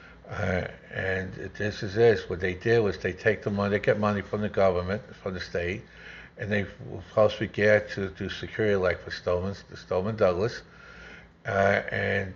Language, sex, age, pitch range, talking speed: English, male, 60-79, 95-110 Hz, 170 wpm